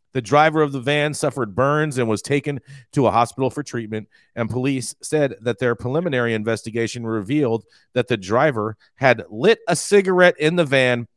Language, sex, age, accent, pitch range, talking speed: English, male, 40-59, American, 115-150 Hz, 175 wpm